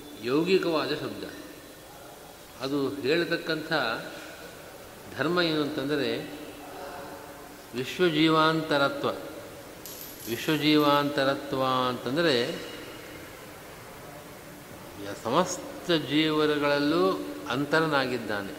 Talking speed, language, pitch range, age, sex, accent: 40 wpm, Kannada, 135-155 Hz, 50-69, male, native